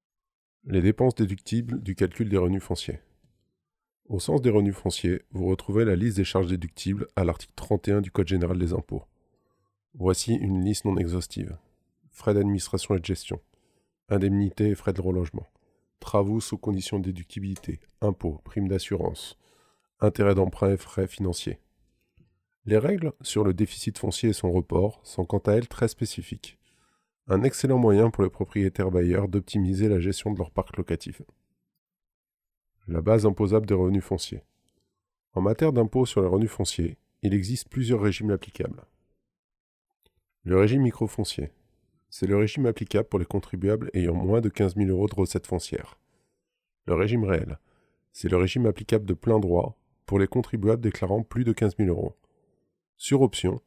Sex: male